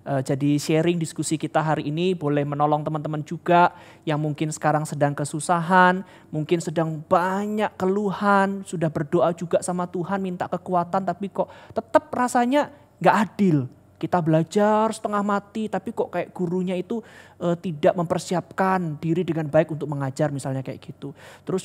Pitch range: 150-200 Hz